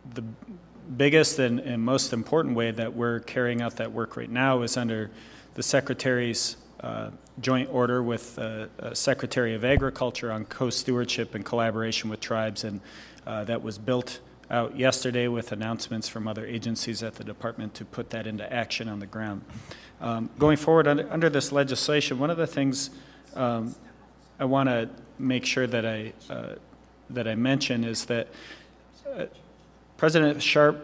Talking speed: 160 wpm